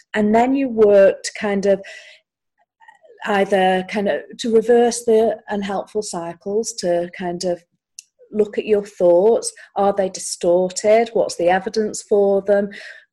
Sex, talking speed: female, 135 wpm